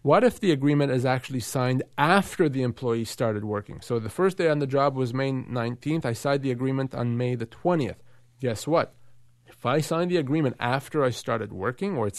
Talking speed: 210 wpm